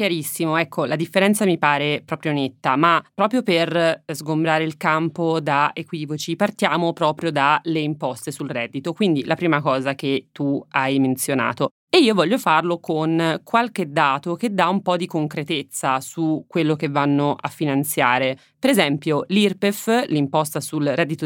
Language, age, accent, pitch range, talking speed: Italian, 30-49, native, 145-180 Hz, 155 wpm